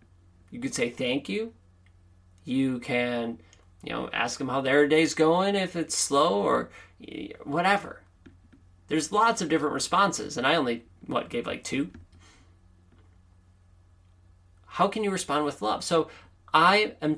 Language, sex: English, male